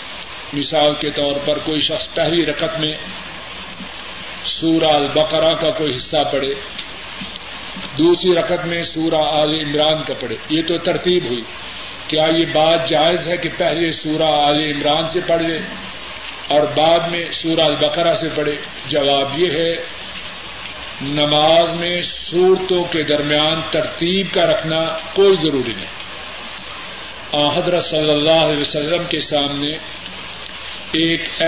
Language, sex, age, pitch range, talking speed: Urdu, male, 50-69, 155-175 Hz, 130 wpm